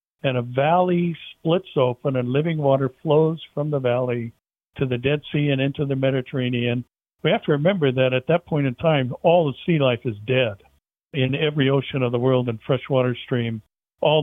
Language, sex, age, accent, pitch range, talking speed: English, male, 60-79, American, 125-150 Hz, 195 wpm